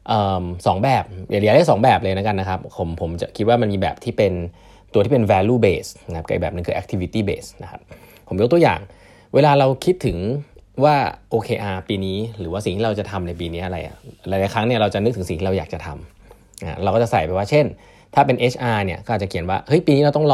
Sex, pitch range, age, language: male, 95-120 Hz, 20-39, Thai